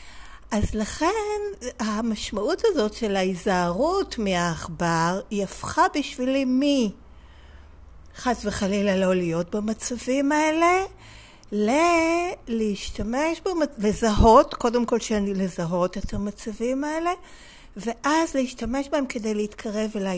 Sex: female